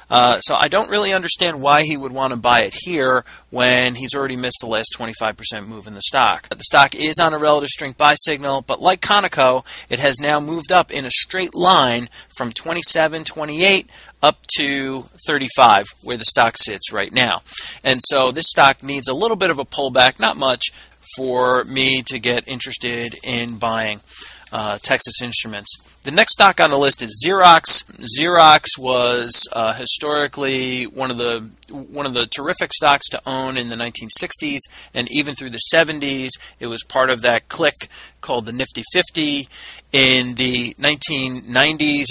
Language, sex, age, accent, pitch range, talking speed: English, male, 30-49, American, 120-150 Hz, 175 wpm